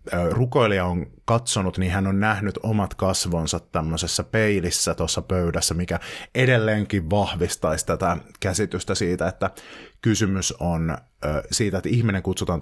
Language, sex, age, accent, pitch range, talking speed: Finnish, male, 30-49, native, 85-110 Hz, 125 wpm